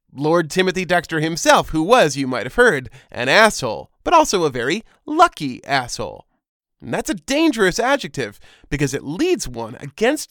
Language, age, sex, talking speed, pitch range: English, 30-49, male, 165 wpm, 140-230 Hz